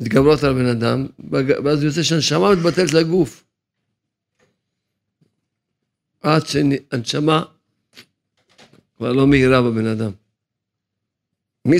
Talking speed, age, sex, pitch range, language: 90 wpm, 50-69, male, 110-140 Hz, Hebrew